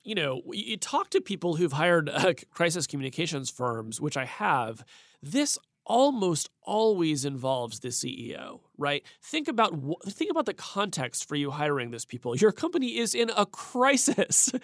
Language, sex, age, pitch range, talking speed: English, male, 30-49, 145-195 Hz, 160 wpm